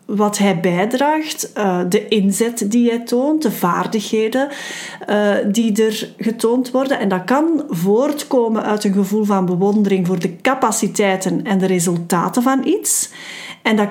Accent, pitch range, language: Dutch, 195-250 Hz, Dutch